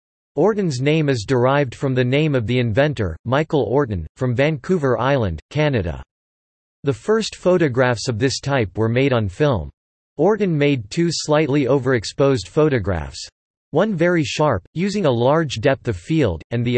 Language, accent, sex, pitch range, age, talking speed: English, American, male, 110-150 Hz, 40-59, 155 wpm